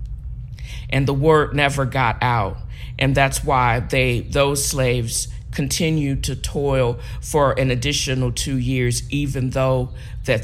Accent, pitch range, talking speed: American, 125-155 Hz, 130 wpm